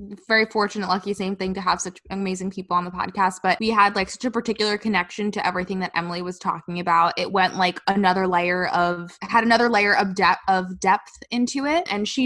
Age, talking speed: 20-39, 220 wpm